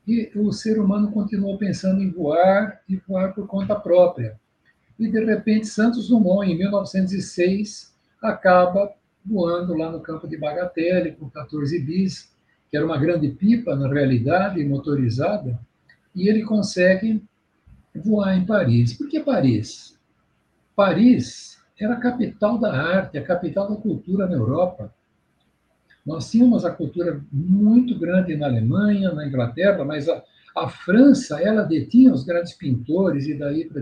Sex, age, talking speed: male, 60-79, 145 wpm